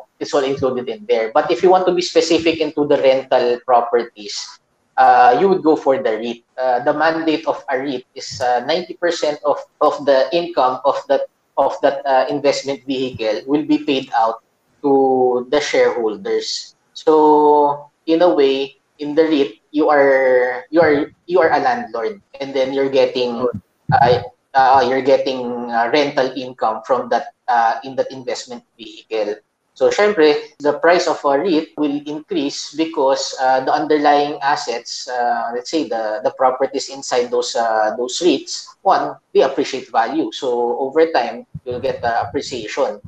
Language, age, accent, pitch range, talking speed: English, 20-39, Filipino, 130-165 Hz, 165 wpm